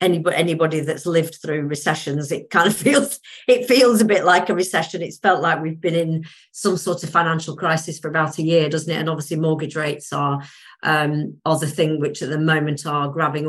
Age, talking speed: 40-59, 210 wpm